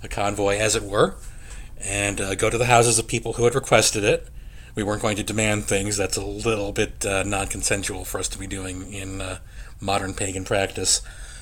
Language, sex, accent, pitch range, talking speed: English, male, American, 95-115 Hz, 205 wpm